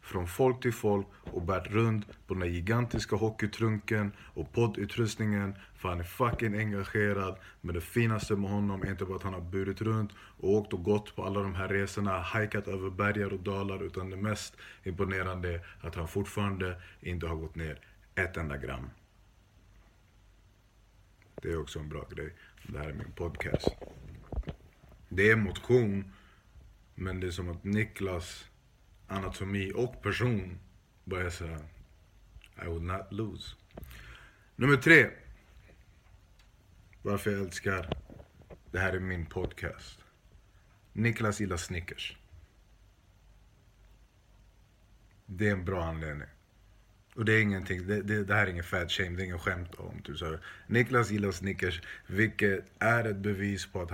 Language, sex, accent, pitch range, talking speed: Swedish, male, native, 90-105 Hz, 150 wpm